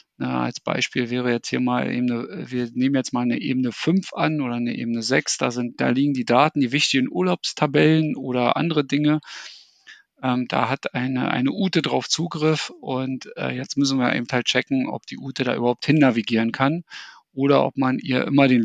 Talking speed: 195 wpm